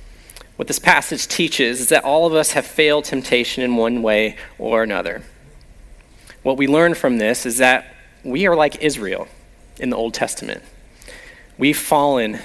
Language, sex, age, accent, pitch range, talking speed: English, male, 30-49, American, 135-200 Hz, 165 wpm